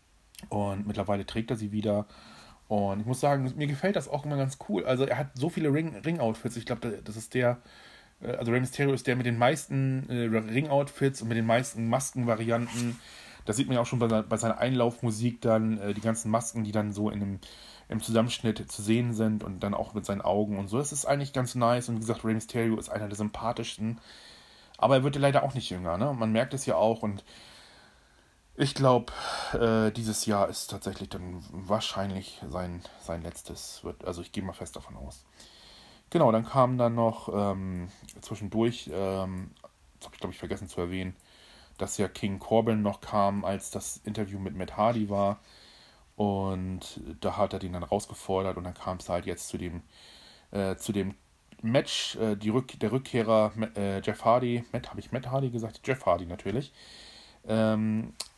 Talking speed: 195 wpm